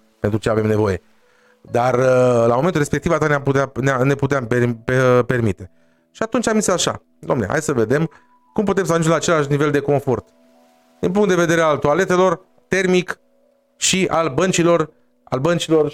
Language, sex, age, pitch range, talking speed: Romanian, male, 30-49, 110-170 Hz, 175 wpm